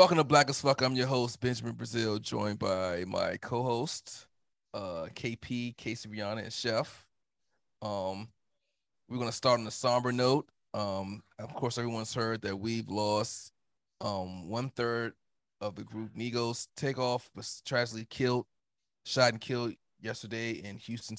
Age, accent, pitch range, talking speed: 20-39, American, 105-125 Hz, 155 wpm